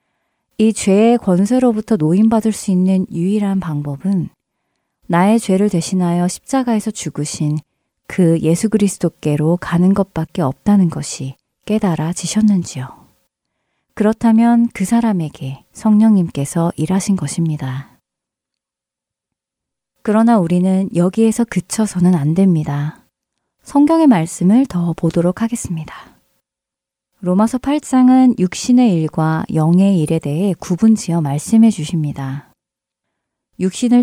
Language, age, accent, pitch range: Korean, 30-49, native, 160-220 Hz